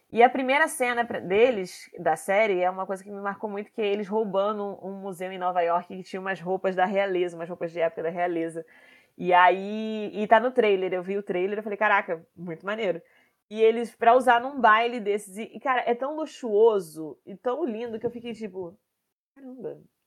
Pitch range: 180-225 Hz